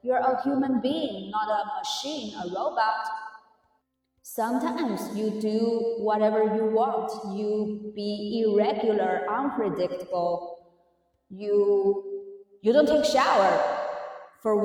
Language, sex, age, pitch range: Chinese, female, 20-39, 195-275 Hz